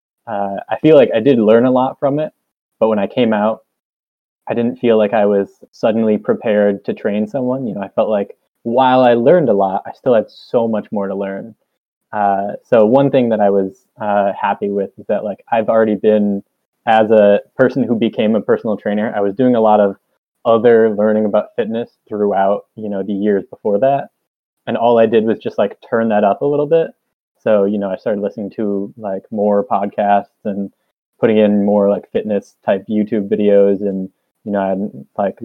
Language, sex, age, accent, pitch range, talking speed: English, male, 20-39, American, 100-110 Hz, 210 wpm